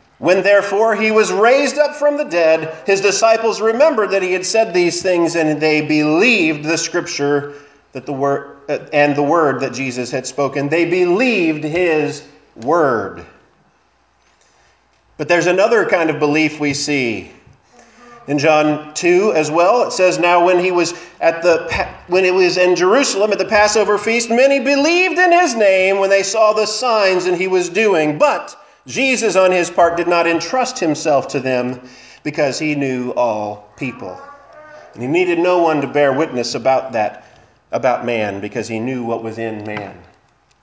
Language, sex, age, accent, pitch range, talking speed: English, male, 40-59, American, 145-215 Hz, 175 wpm